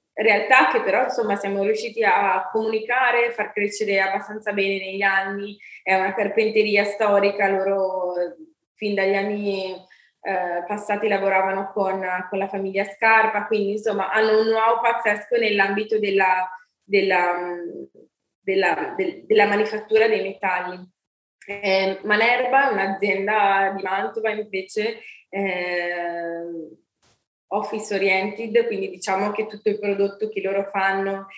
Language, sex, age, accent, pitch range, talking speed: Italian, female, 20-39, native, 195-220 Hz, 120 wpm